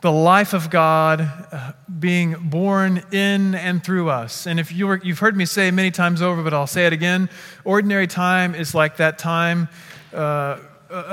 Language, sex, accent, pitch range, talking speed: English, male, American, 160-195 Hz, 185 wpm